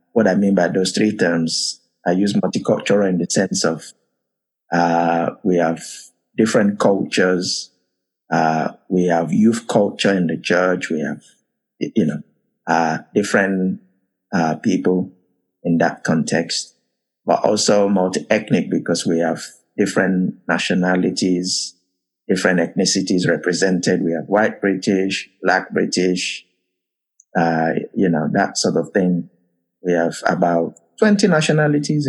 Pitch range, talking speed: 85-100 Hz, 125 wpm